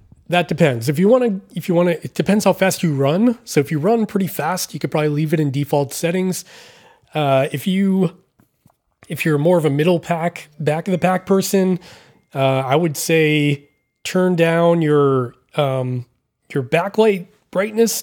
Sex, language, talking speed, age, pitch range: male, English, 185 wpm, 20-39, 140-175 Hz